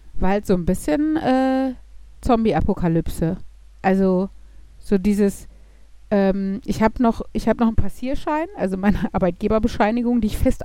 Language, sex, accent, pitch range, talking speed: German, female, German, 190-245 Hz, 135 wpm